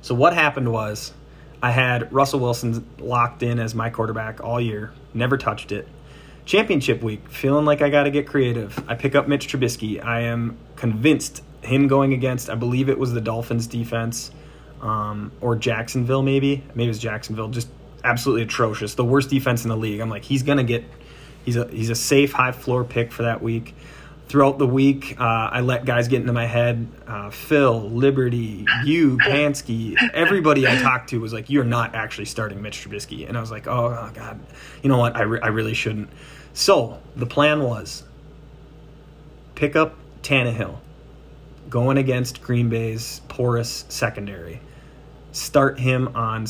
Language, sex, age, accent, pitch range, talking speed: English, male, 20-39, American, 115-140 Hz, 175 wpm